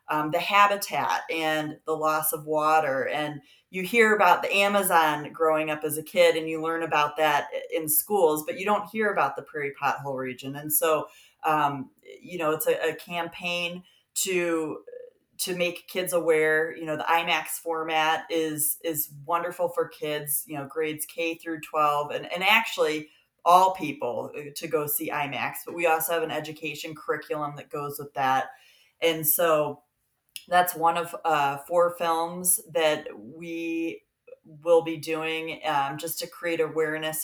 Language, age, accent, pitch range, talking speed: English, 30-49, American, 150-180 Hz, 165 wpm